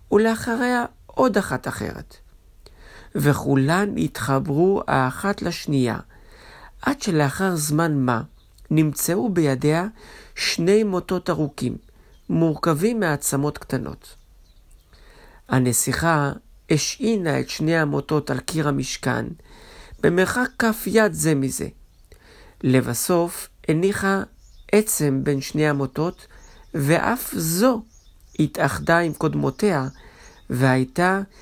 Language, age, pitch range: Hebrew, 50-69, 135-190 Hz